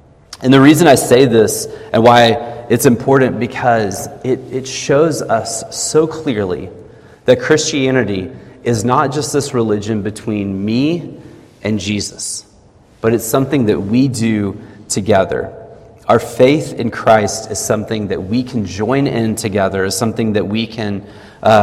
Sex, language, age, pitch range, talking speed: male, English, 30-49, 105-130 Hz, 145 wpm